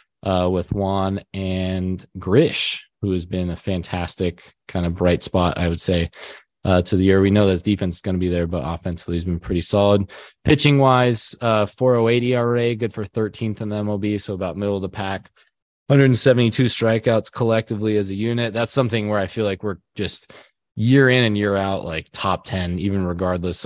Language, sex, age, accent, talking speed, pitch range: English, male, 20-39, American, 195 wpm, 95-115 Hz